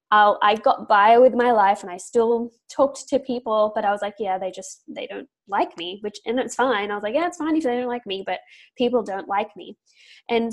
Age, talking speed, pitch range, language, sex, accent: 10-29, 250 wpm, 215-265 Hz, English, female, Australian